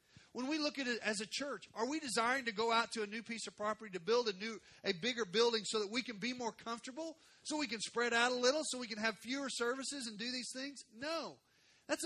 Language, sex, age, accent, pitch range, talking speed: English, male, 40-59, American, 185-250 Hz, 265 wpm